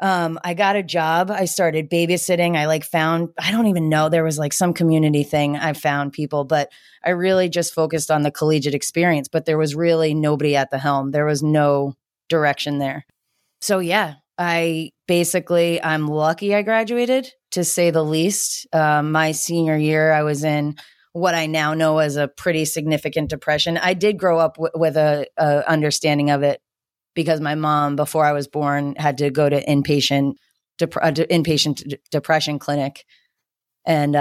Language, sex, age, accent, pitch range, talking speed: English, female, 30-49, American, 145-170 Hz, 180 wpm